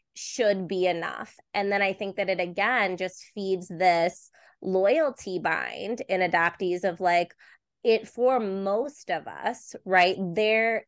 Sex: female